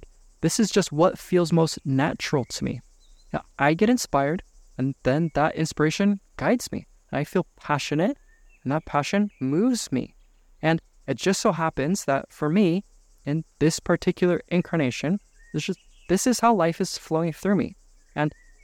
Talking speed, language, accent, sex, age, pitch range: 150 wpm, English, American, male, 20-39, 145-180 Hz